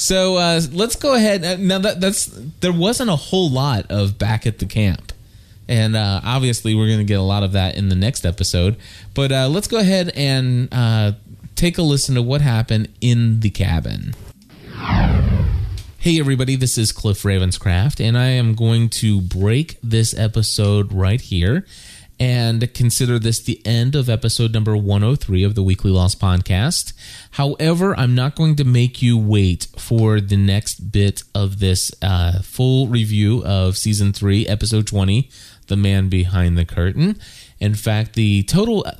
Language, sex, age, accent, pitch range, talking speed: English, male, 30-49, American, 100-125 Hz, 170 wpm